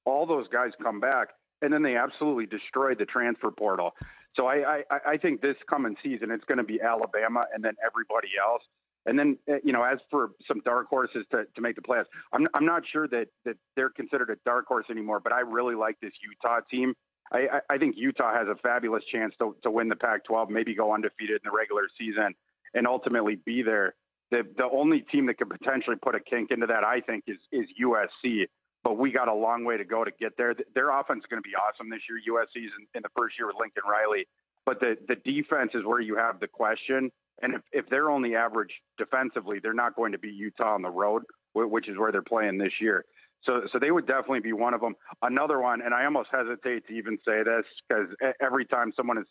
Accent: American